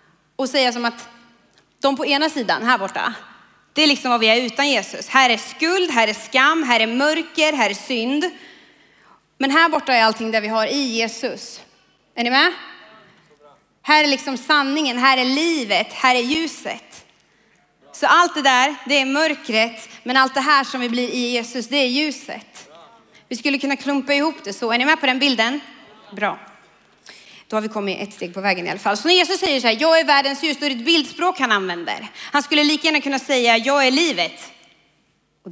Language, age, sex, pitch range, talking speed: Swedish, 30-49, female, 225-295 Hz, 210 wpm